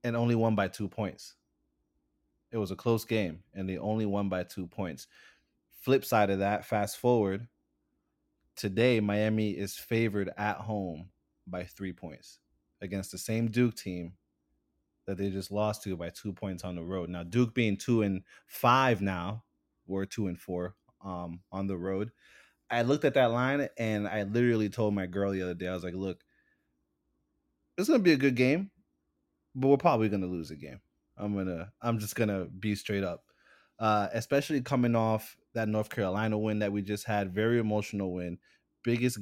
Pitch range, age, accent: 90-110 Hz, 20-39, American